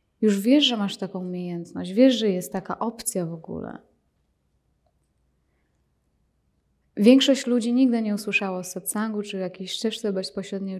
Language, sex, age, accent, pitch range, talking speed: Polish, female, 20-39, native, 185-220 Hz, 140 wpm